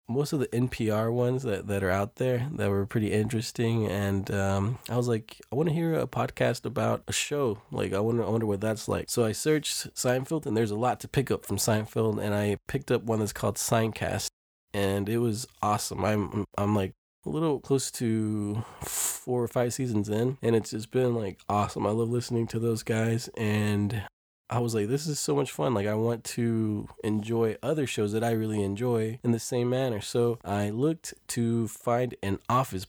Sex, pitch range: male, 105-125 Hz